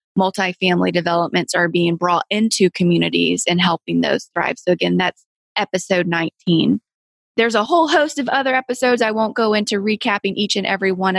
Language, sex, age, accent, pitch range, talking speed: English, female, 20-39, American, 180-215 Hz, 170 wpm